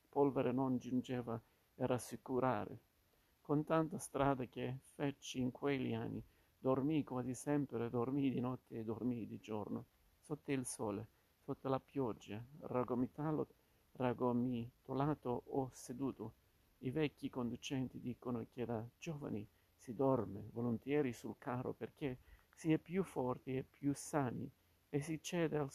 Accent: native